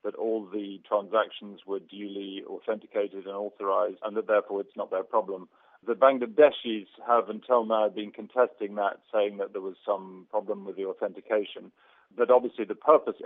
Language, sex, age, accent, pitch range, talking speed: English, male, 40-59, British, 100-130 Hz, 170 wpm